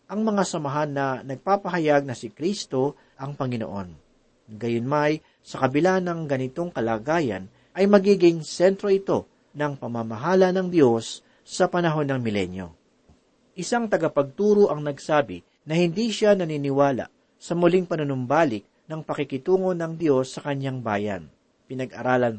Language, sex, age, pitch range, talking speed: Filipino, male, 40-59, 130-175 Hz, 125 wpm